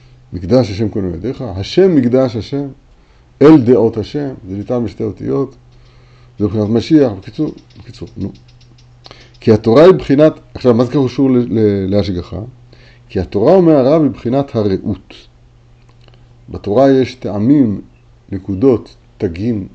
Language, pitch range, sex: Hebrew, 105-130 Hz, male